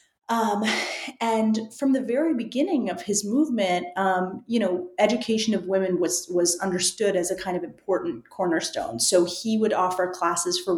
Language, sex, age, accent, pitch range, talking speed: English, female, 30-49, American, 180-230 Hz, 165 wpm